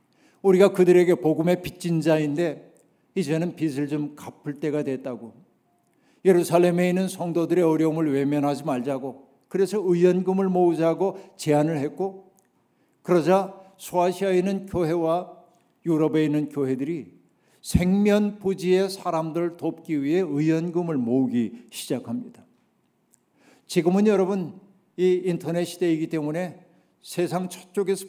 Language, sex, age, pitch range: Korean, male, 60-79, 160-190 Hz